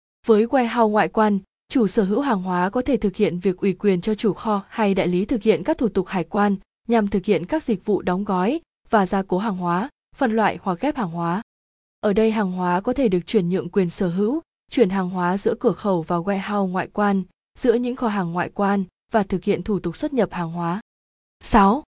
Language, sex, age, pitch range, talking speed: Vietnamese, female, 20-39, 185-230 Hz, 235 wpm